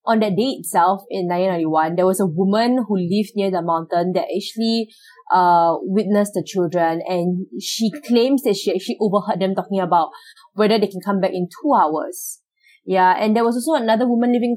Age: 20-39